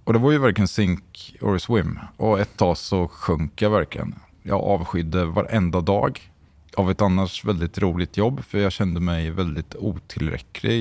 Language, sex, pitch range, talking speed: Swedish, male, 85-105 Hz, 170 wpm